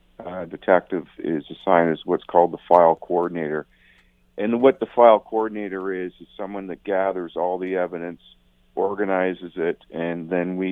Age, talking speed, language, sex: 50-69, 155 wpm, English, male